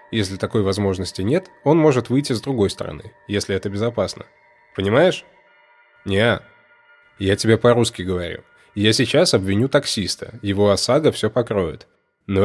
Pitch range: 100-140 Hz